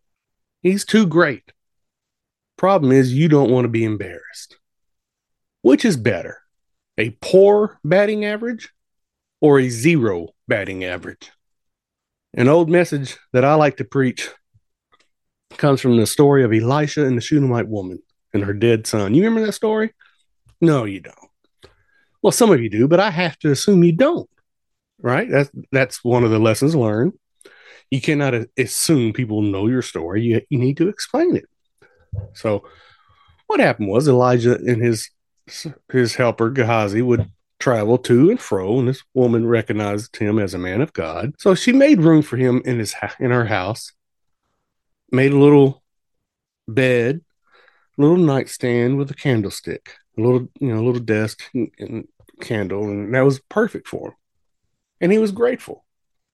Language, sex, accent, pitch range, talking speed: English, male, American, 115-155 Hz, 160 wpm